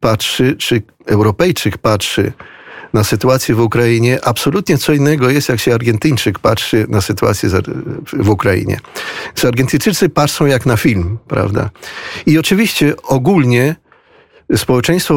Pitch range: 115-140 Hz